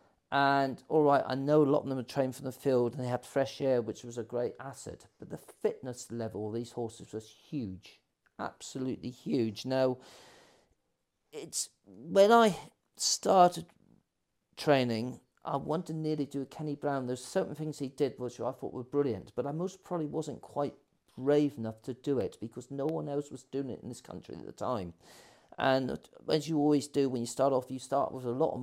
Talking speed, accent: 205 wpm, British